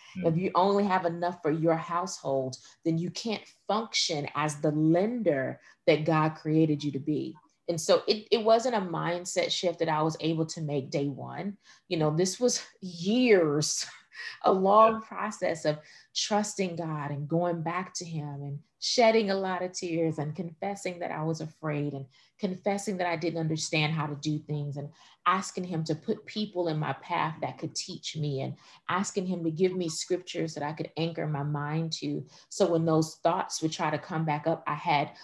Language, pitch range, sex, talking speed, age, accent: English, 155-180 Hz, female, 195 wpm, 30-49, American